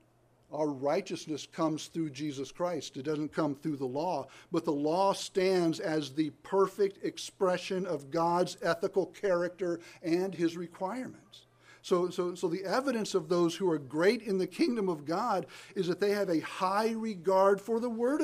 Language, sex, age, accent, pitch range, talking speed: English, male, 50-69, American, 150-195 Hz, 170 wpm